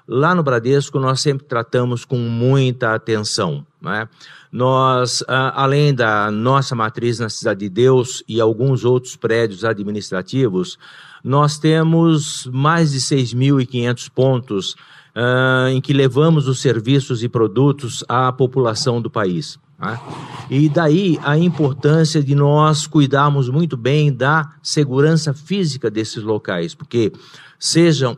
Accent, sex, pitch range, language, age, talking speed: Brazilian, male, 125-150 Hz, Portuguese, 50-69, 125 wpm